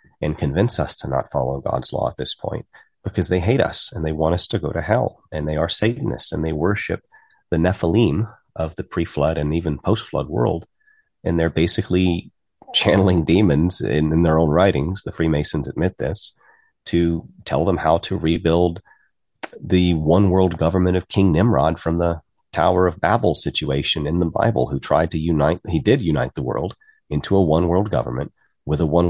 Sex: male